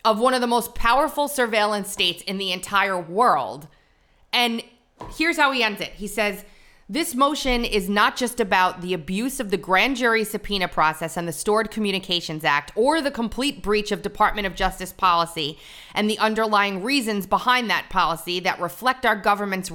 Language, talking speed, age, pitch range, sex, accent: English, 180 wpm, 30-49, 180-225 Hz, female, American